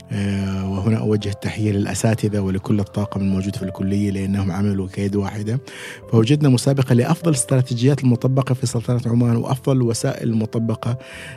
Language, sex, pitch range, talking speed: Arabic, male, 100-125 Hz, 125 wpm